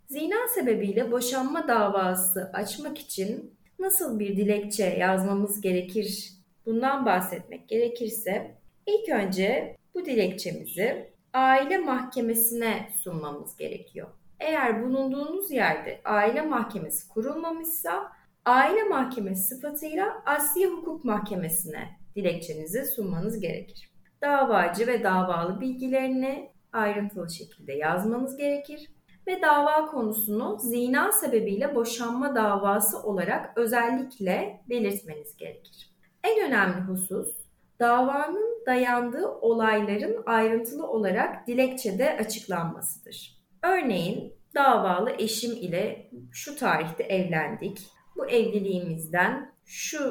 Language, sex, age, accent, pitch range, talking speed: Turkish, female, 30-49, native, 195-270 Hz, 90 wpm